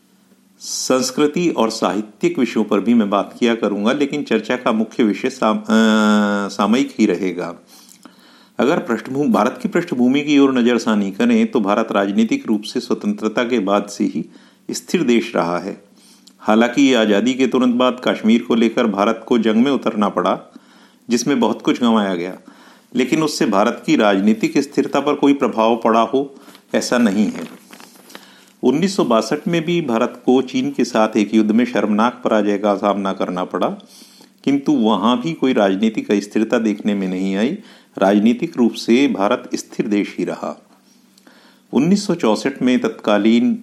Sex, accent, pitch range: male, native, 105-145 Hz